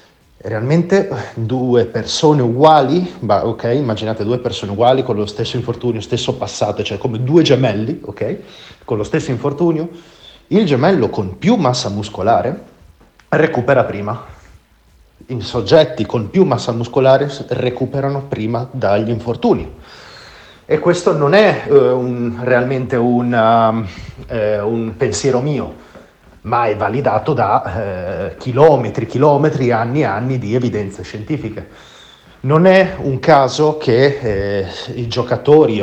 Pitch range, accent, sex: 110-140 Hz, native, male